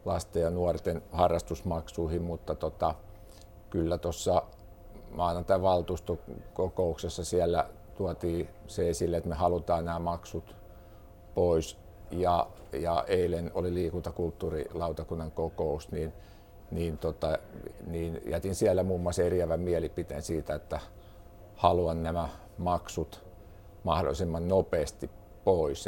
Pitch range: 85-95 Hz